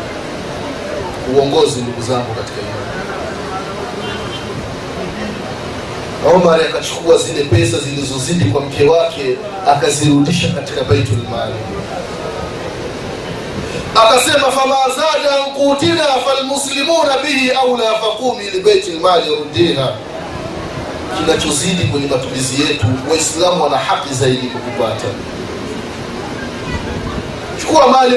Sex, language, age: male, Swahili, 30-49